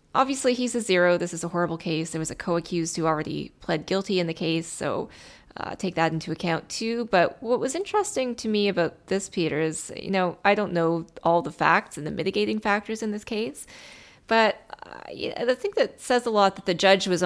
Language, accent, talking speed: English, American, 225 wpm